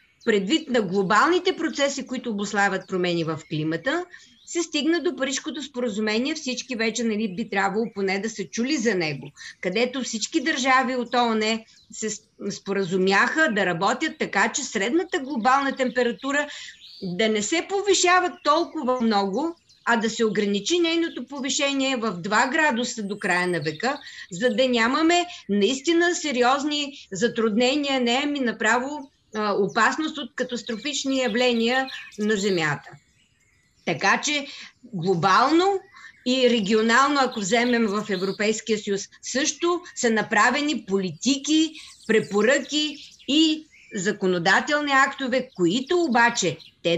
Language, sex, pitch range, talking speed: Bulgarian, female, 205-285 Hz, 120 wpm